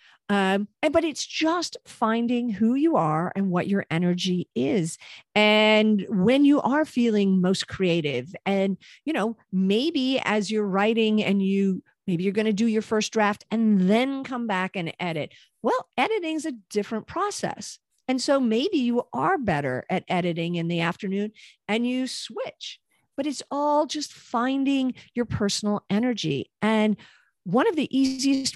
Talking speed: 160 wpm